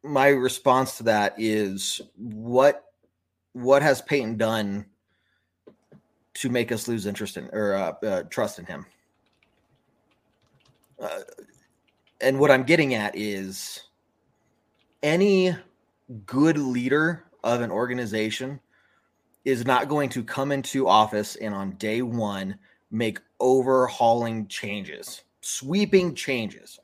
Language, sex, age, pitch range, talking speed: English, male, 30-49, 110-145 Hz, 115 wpm